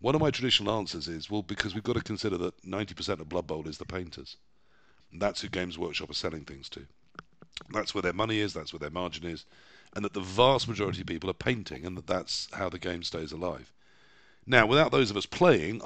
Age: 50-69